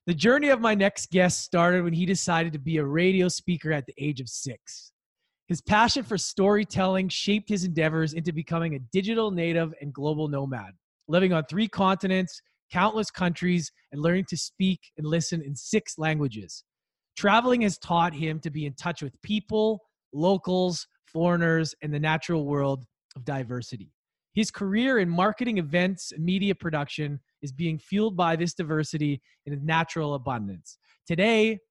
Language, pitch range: English, 150-195 Hz